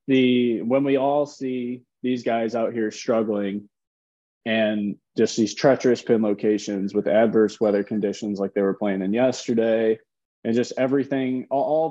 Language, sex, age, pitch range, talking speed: English, male, 20-39, 105-125 Hz, 155 wpm